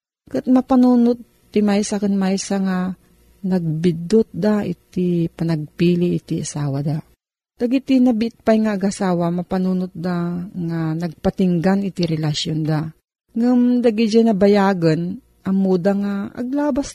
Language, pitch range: Filipino, 170-220 Hz